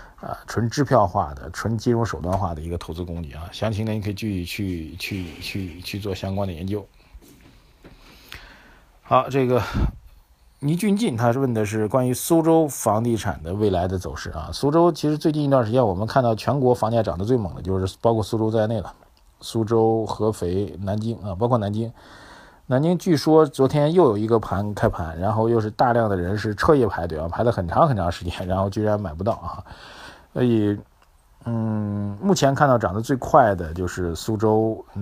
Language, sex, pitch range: Chinese, male, 95-125 Hz